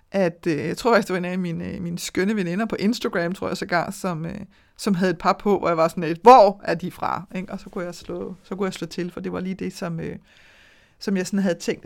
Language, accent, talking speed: Danish, native, 290 wpm